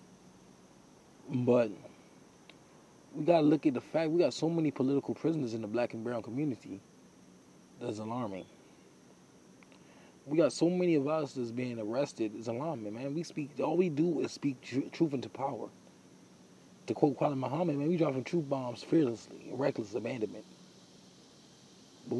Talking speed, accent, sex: 155 wpm, American, male